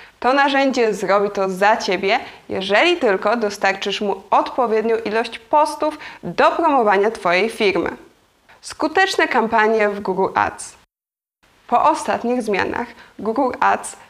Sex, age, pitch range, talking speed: female, 20-39, 215-285 Hz, 115 wpm